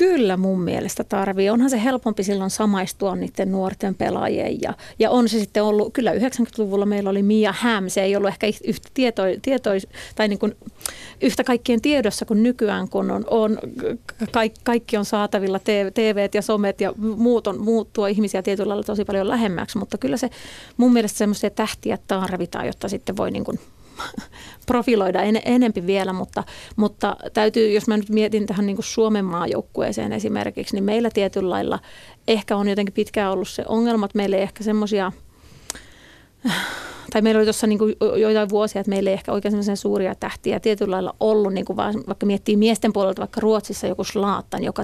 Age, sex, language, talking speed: 30-49, female, Finnish, 175 wpm